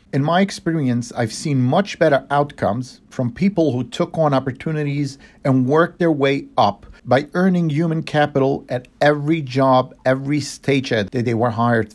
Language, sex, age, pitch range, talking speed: English, male, 50-69, 125-165 Hz, 160 wpm